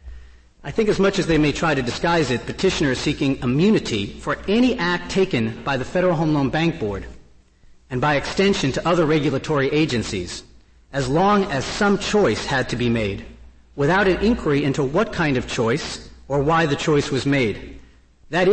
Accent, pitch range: American, 120-170 Hz